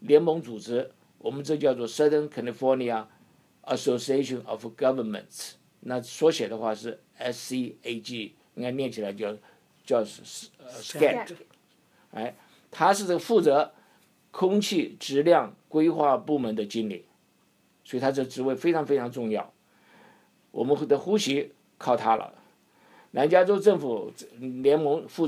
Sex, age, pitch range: male, 50-69, 120-150 Hz